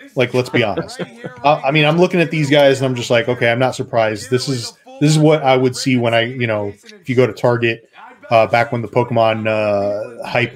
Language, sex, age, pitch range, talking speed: English, male, 20-39, 115-140 Hz, 250 wpm